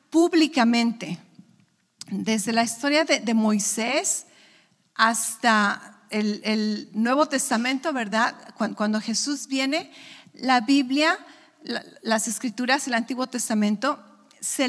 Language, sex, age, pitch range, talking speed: English, female, 50-69, 220-285 Hz, 100 wpm